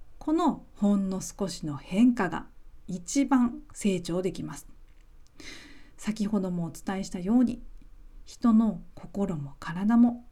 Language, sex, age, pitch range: Japanese, female, 40-59, 175-235 Hz